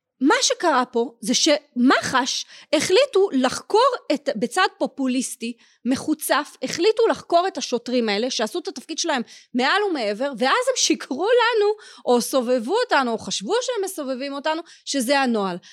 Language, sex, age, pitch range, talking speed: Hebrew, female, 30-49, 240-365 Hz, 135 wpm